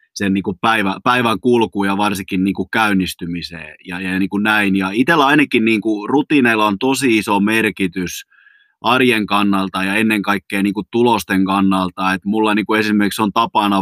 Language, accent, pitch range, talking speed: Finnish, native, 95-110 Hz, 175 wpm